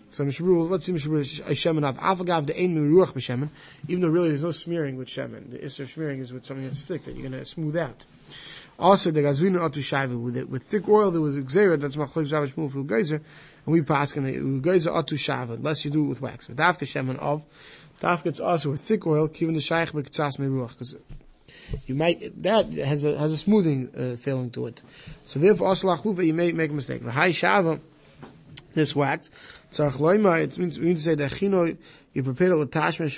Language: English